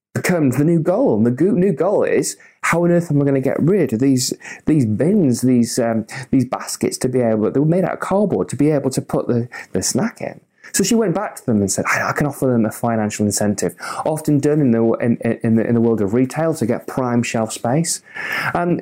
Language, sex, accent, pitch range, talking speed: English, male, British, 115-165 Hz, 250 wpm